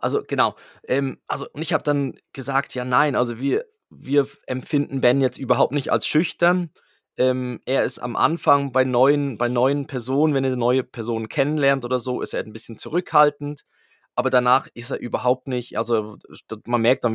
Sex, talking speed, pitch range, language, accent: male, 185 wpm, 125-145 Hz, German, German